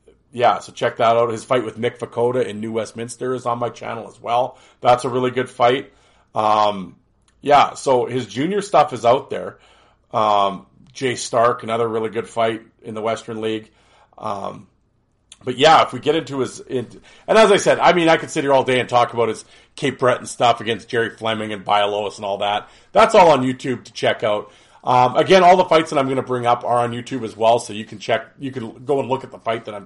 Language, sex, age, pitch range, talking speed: English, male, 40-59, 115-130 Hz, 235 wpm